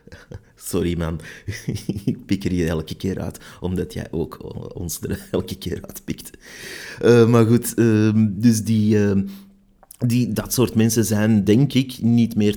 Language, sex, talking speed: Dutch, male, 160 wpm